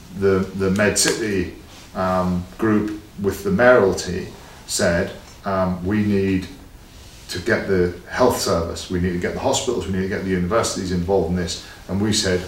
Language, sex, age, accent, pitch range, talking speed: Italian, male, 40-59, British, 90-100 Hz, 175 wpm